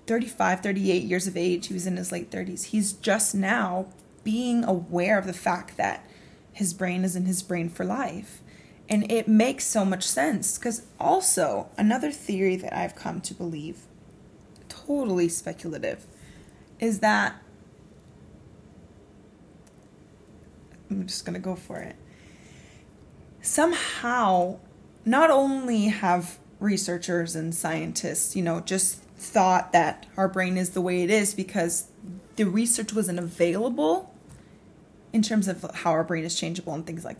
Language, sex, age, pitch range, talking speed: English, female, 20-39, 180-230 Hz, 145 wpm